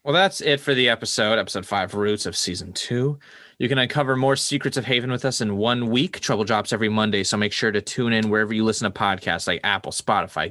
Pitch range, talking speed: 105-135 Hz, 240 wpm